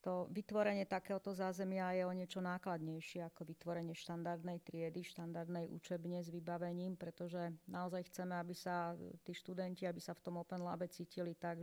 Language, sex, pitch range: Slovak, female, 170-185 Hz